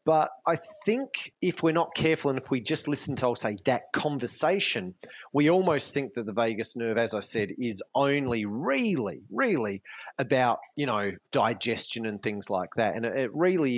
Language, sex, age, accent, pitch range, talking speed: English, male, 30-49, Australian, 115-150 Hz, 185 wpm